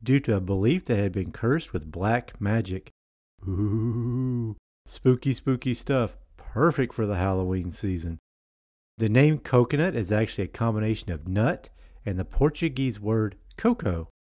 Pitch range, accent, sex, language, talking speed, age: 90-130 Hz, American, male, English, 145 wpm, 50-69